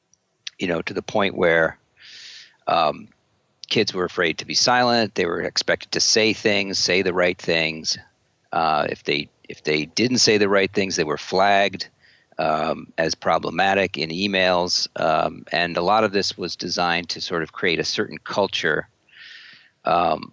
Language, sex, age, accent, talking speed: English, male, 50-69, American, 170 wpm